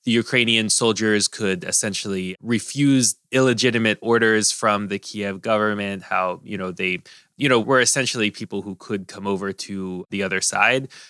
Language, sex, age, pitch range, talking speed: English, male, 20-39, 105-135 Hz, 155 wpm